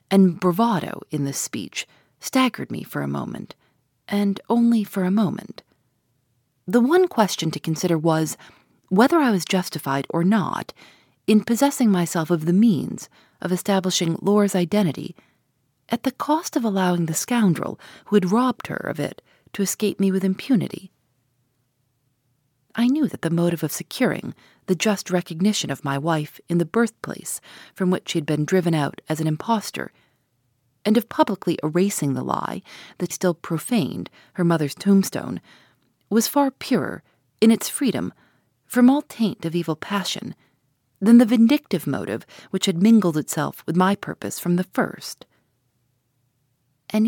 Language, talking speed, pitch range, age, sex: English, 155 wpm, 155-225 Hz, 40-59, female